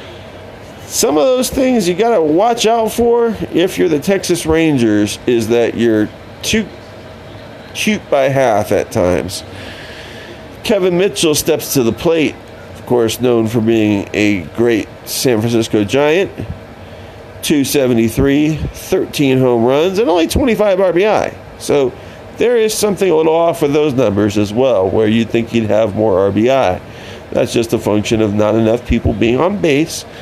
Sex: male